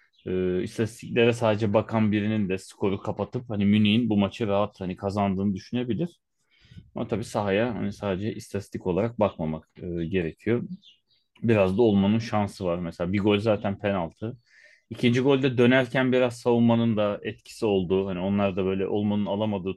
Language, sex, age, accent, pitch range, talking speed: Turkish, male, 30-49, native, 95-115 Hz, 150 wpm